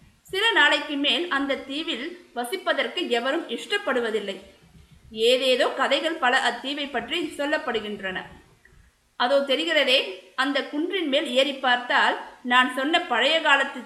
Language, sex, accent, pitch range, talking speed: Tamil, female, native, 250-305 Hz, 110 wpm